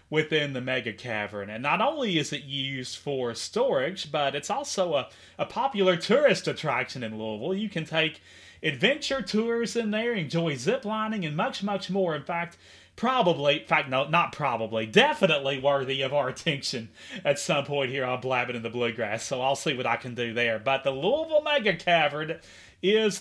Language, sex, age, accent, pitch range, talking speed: English, male, 30-49, American, 140-225 Hz, 190 wpm